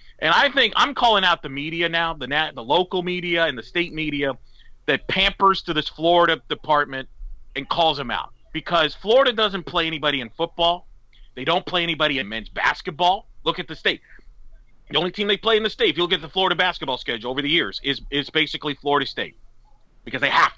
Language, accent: English, American